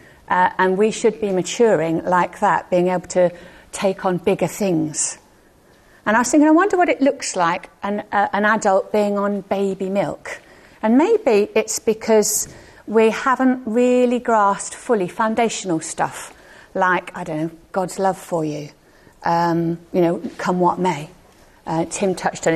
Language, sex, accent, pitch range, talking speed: English, female, British, 180-210 Hz, 165 wpm